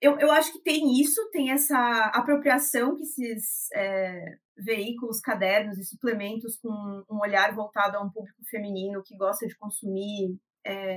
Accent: Brazilian